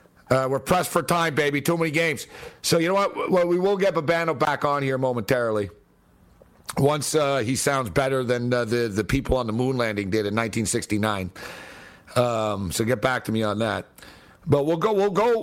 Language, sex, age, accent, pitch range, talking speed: English, male, 50-69, American, 120-160 Hz, 200 wpm